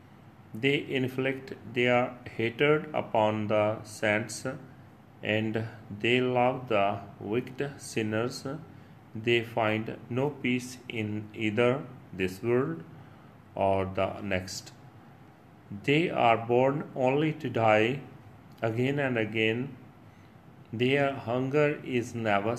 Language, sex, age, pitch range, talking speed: Punjabi, male, 40-59, 105-130 Hz, 100 wpm